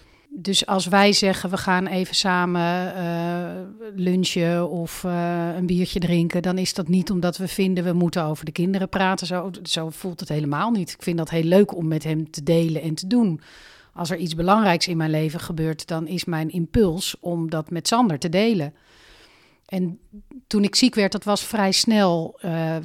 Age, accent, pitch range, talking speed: 40-59, Dutch, 170-200 Hz, 195 wpm